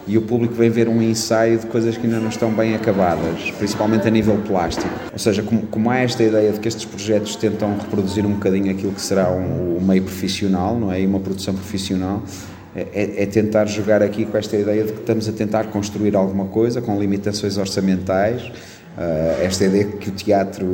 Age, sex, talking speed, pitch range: 30-49, male, 205 wpm, 95-110 Hz